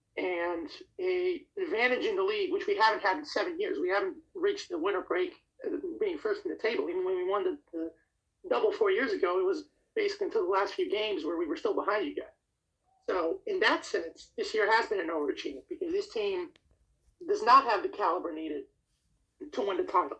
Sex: male